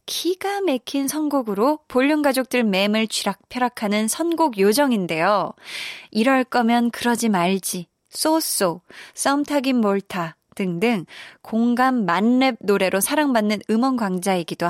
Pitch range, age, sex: 195-265 Hz, 20-39, female